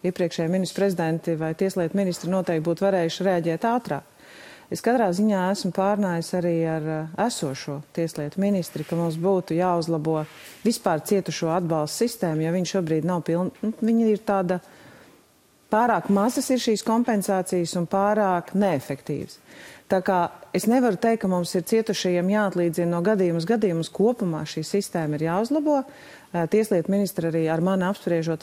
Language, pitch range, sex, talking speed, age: English, 170-205 Hz, female, 145 wpm, 40-59